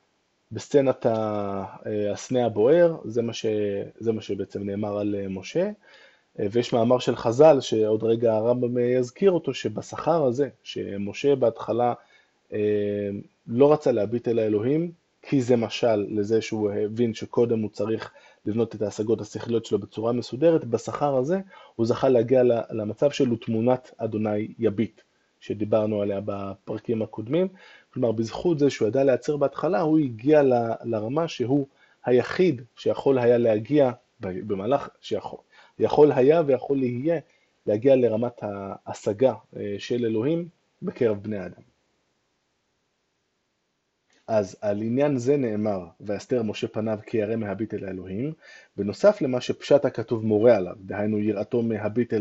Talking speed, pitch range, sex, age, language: 125 wpm, 105-135 Hz, male, 20-39, Hebrew